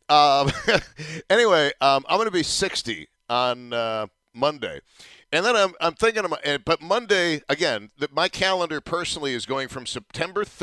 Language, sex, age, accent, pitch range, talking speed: English, male, 50-69, American, 125-165 Hz, 145 wpm